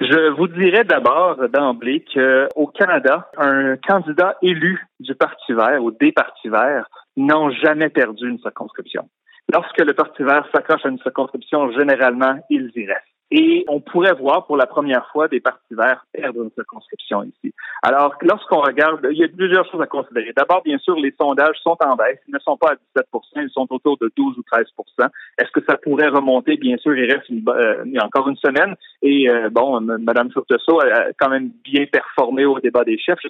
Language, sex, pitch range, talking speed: French, male, 130-165 Hz, 195 wpm